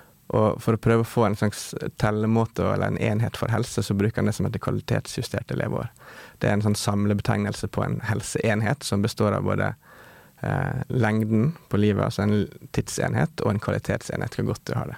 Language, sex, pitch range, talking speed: English, male, 105-115 Hz, 190 wpm